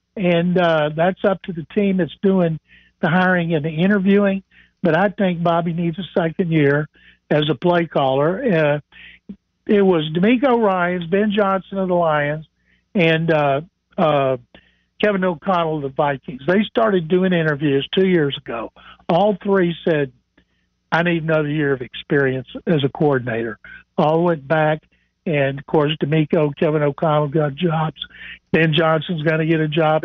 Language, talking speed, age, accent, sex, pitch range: English, 160 wpm, 60-79, American, male, 155-190 Hz